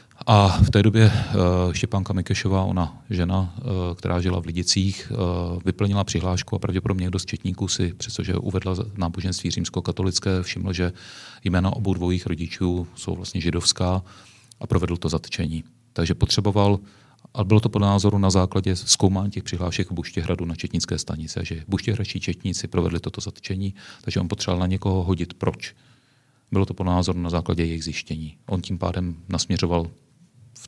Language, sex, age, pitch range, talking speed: Czech, male, 40-59, 90-105 Hz, 155 wpm